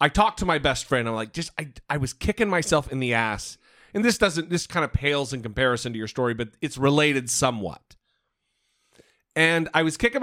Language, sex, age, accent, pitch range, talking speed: English, male, 40-59, American, 130-175 Hz, 215 wpm